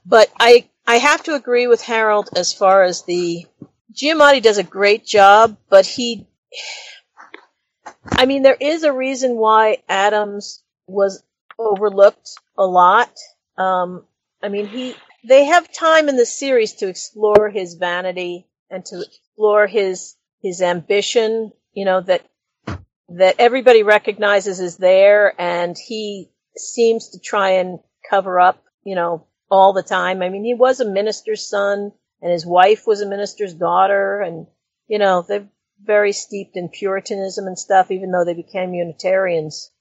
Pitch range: 180-230 Hz